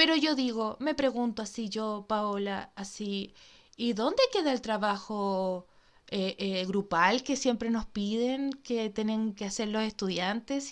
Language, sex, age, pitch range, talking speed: Spanish, female, 20-39, 210-275 Hz, 150 wpm